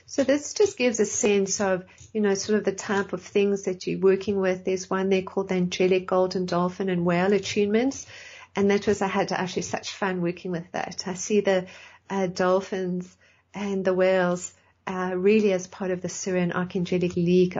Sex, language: female, English